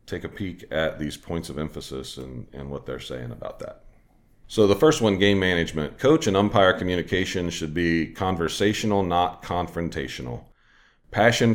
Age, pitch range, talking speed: 40-59, 75-95 Hz, 160 wpm